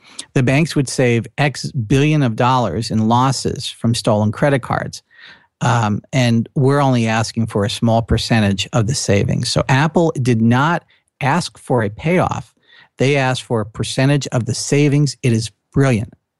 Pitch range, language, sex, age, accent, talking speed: 115-145 Hz, English, male, 50-69, American, 165 wpm